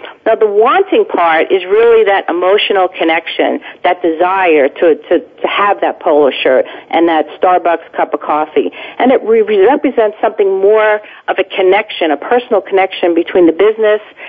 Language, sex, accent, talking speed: English, female, American, 160 wpm